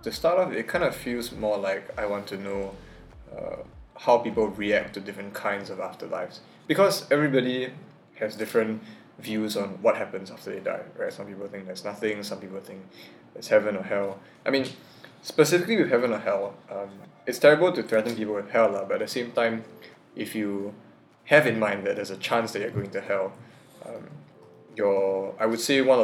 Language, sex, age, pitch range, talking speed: English, male, 20-39, 100-125 Hz, 200 wpm